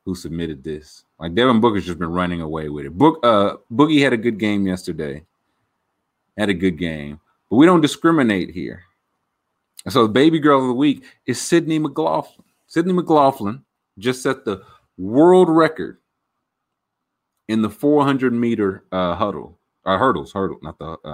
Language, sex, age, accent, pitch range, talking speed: English, male, 30-49, American, 95-160 Hz, 160 wpm